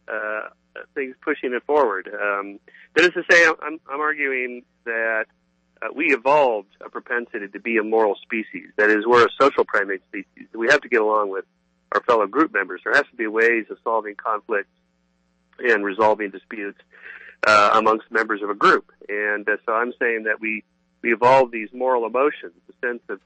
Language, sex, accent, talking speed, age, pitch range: English, male, American, 190 wpm, 40-59, 95-120 Hz